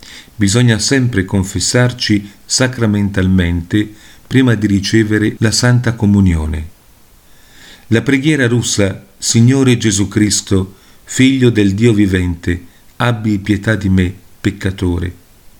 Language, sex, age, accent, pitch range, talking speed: Italian, male, 50-69, native, 100-120 Hz, 95 wpm